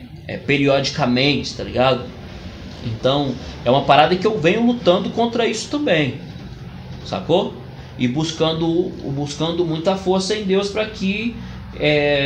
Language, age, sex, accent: Portuguese, 20-39, male, Brazilian